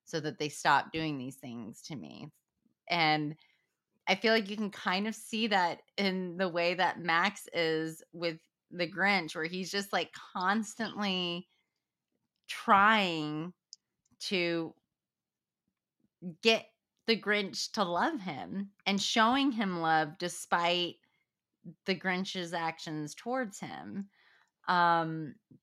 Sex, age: female, 30-49